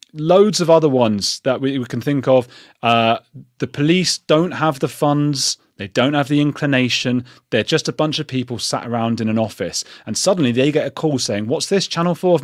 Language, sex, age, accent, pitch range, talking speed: English, male, 30-49, British, 120-155 Hz, 215 wpm